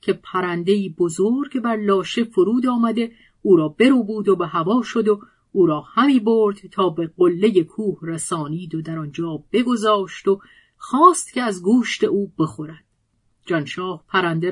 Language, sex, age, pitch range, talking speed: Persian, female, 40-59, 175-230 Hz, 155 wpm